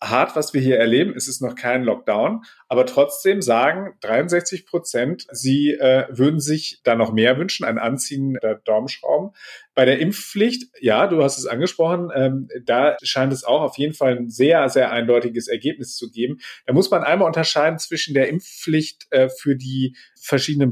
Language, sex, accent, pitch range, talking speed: German, male, German, 125-155 Hz, 185 wpm